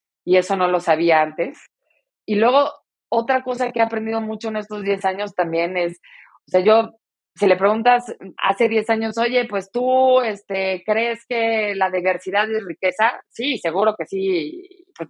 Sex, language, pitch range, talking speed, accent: female, Spanish, 180-225 Hz, 175 wpm, Mexican